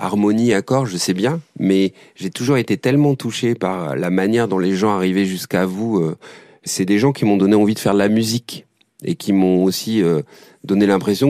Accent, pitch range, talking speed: French, 95-120 Hz, 200 wpm